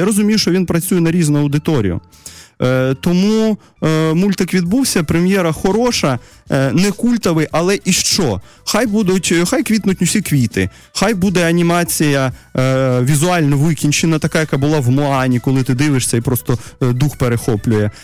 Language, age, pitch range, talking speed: Russian, 20-39, 130-175 Hz, 155 wpm